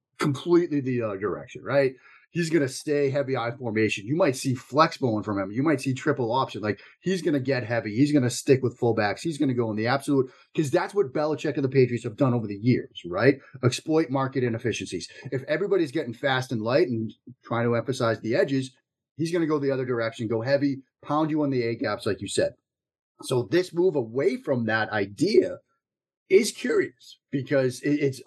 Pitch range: 115-145 Hz